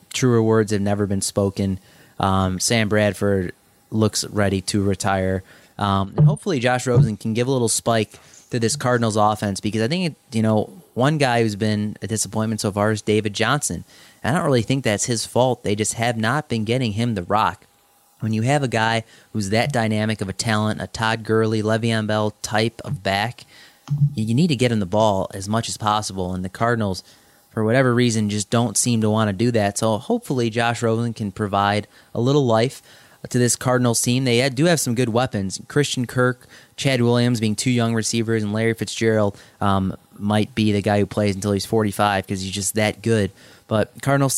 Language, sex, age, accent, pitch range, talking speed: English, male, 20-39, American, 105-125 Hz, 200 wpm